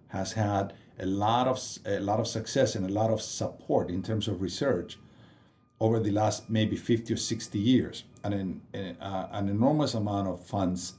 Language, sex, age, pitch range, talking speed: English, male, 50-69, 95-120 Hz, 190 wpm